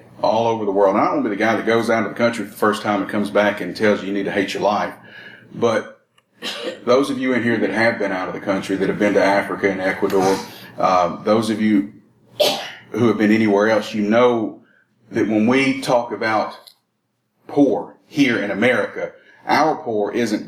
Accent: American